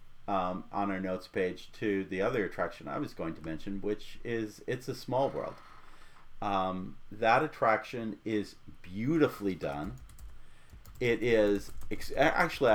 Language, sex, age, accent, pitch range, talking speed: English, male, 40-59, American, 95-115 Hz, 135 wpm